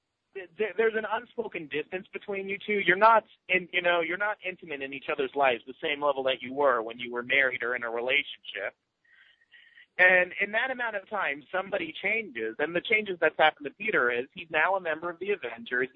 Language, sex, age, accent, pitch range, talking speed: English, male, 30-49, American, 135-195 Hz, 210 wpm